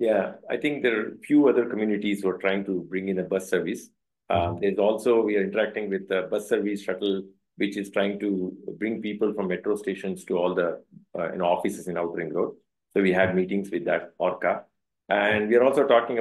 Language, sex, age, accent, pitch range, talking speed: English, male, 50-69, Indian, 100-125 Hz, 220 wpm